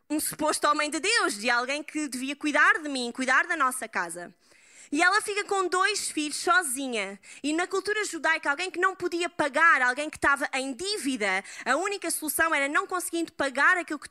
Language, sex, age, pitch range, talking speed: Portuguese, female, 20-39, 255-335 Hz, 195 wpm